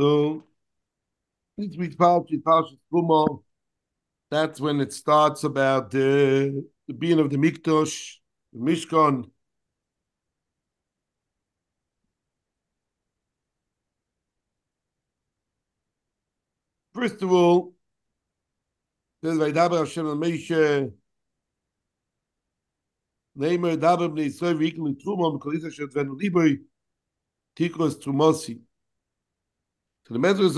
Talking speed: 40 wpm